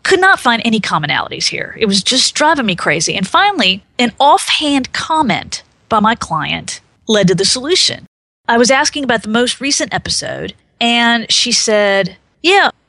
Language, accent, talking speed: English, American, 170 wpm